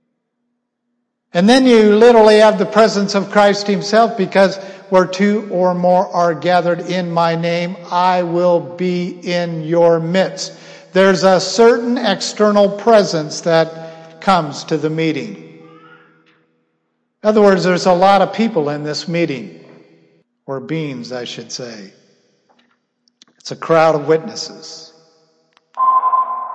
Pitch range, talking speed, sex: 165-220 Hz, 130 wpm, male